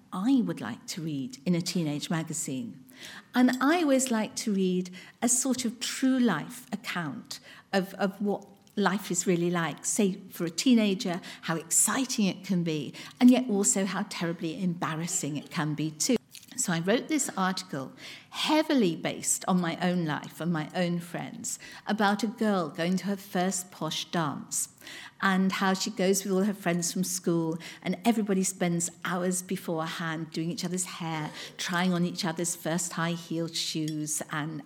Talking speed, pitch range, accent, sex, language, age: 170 wpm, 165-200 Hz, British, female, English, 50-69